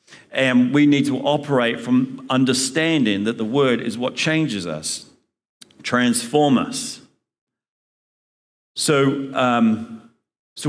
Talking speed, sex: 105 wpm, male